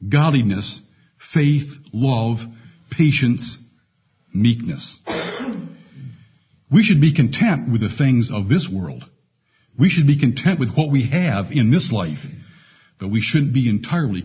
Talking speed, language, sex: 130 wpm, English, male